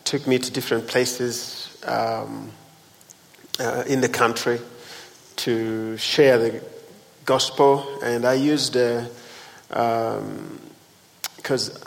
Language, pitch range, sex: English, 115-130 Hz, male